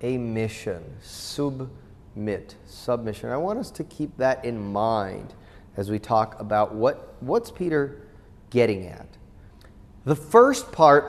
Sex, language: male, English